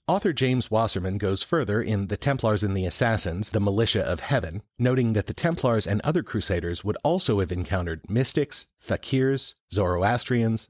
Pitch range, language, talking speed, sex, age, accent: 95-115 Hz, English, 165 wpm, male, 30-49, American